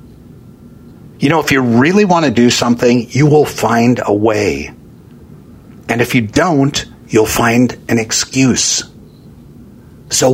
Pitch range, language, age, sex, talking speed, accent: 100-125 Hz, English, 50-69, male, 135 wpm, American